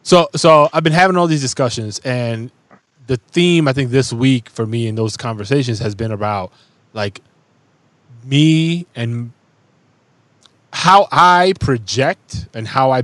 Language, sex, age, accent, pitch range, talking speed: English, male, 20-39, American, 110-140 Hz, 145 wpm